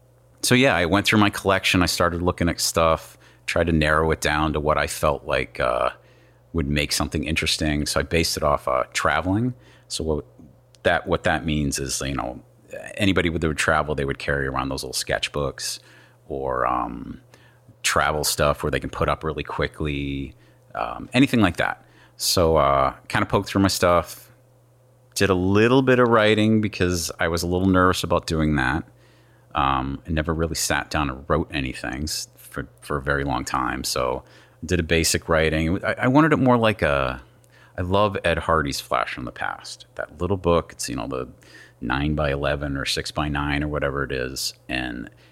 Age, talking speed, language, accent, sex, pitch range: 30-49, 195 wpm, English, American, male, 75-95 Hz